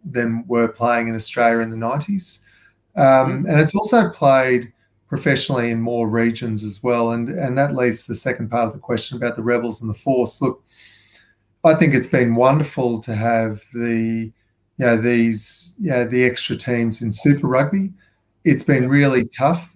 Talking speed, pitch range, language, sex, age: 180 wpm, 115-135 Hz, English, male, 30-49